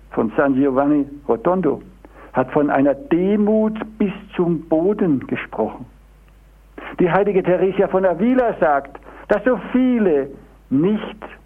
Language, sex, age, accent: German, male, 60-79, German